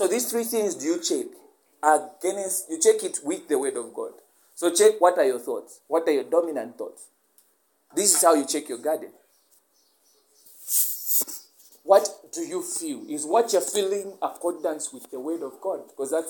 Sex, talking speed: male, 190 wpm